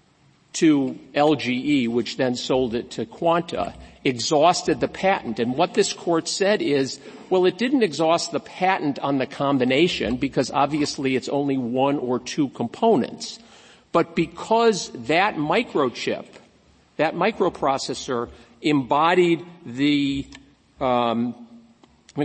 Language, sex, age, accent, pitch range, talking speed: English, male, 50-69, American, 130-170 Hz, 120 wpm